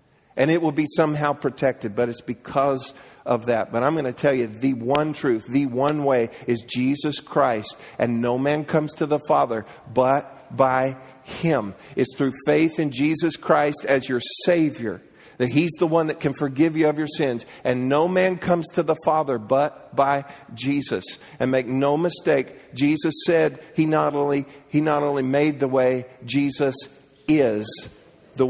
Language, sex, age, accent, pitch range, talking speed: English, male, 50-69, American, 130-155 Hz, 175 wpm